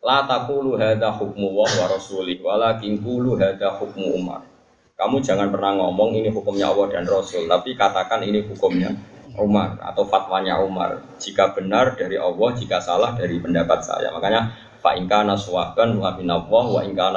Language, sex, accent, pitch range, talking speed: Indonesian, male, native, 100-160 Hz, 115 wpm